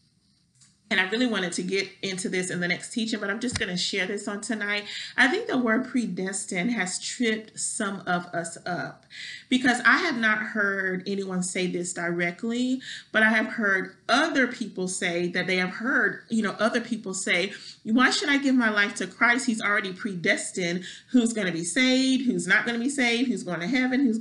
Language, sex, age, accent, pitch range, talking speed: English, male, 30-49, American, 190-250 Hz, 210 wpm